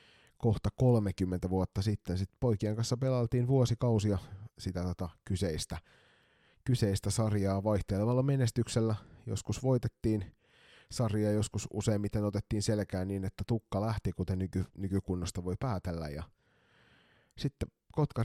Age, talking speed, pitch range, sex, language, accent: 30-49, 115 wpm, 95-110 Hz, male, Finnish, native